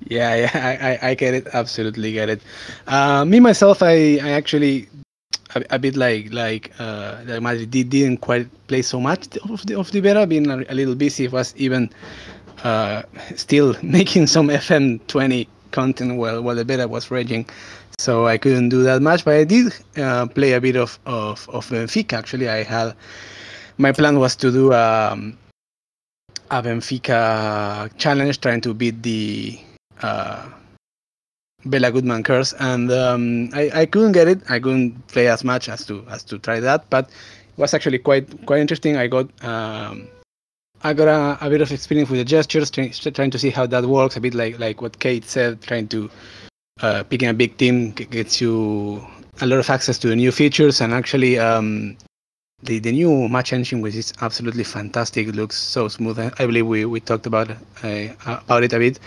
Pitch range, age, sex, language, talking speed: 115-135 Hz, 20-39, male, English, 190 wpm